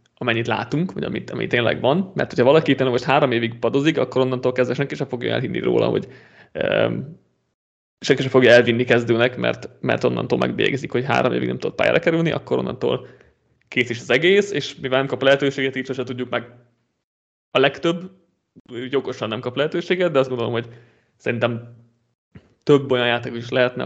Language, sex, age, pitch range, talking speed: Hungarian, male, 30-49, 115-140 Hz, 180 wpm